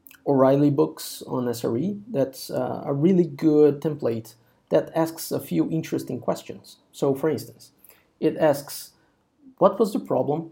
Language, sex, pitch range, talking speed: English, male, 130-165 Hz, 145 wpm